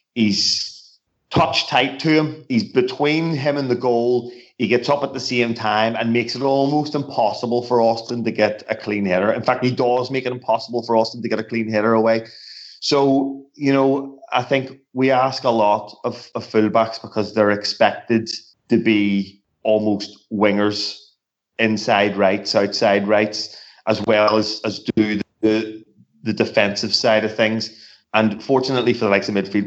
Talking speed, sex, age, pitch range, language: 175 wpm, male, 30-49, 105-130 Hz, English